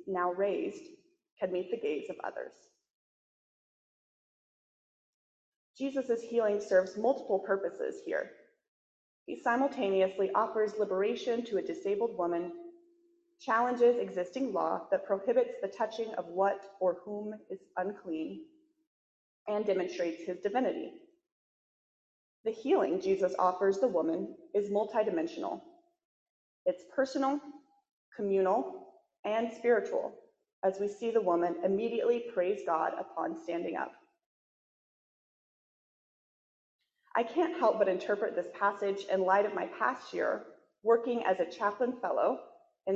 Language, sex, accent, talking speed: English, female, American, 115 wpm